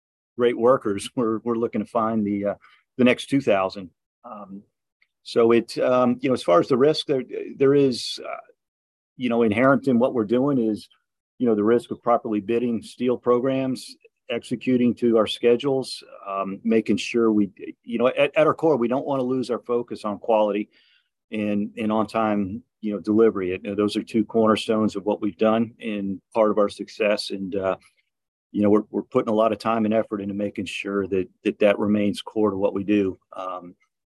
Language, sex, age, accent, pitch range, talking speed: English, male, 40-59, American, 105-120 Hz, 205 wpm